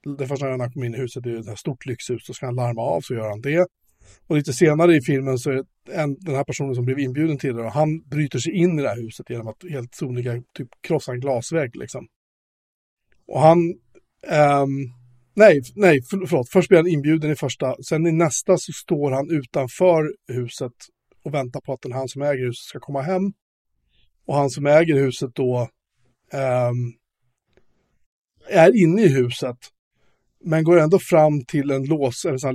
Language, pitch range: Swedish, 125-160 Hz